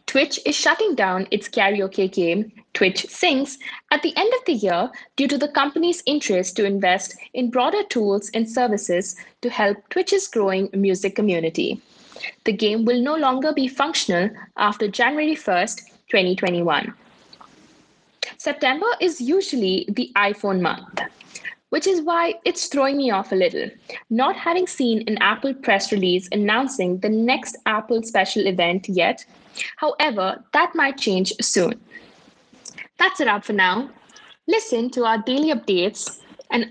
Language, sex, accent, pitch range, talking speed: English, female, Indian, 200-290 Hz, 145 wpm